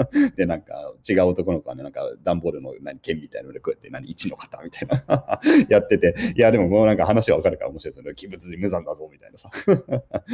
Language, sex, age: Japanese, male, 30-49